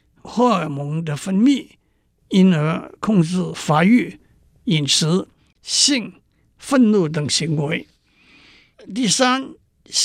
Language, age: Chinese, 60-79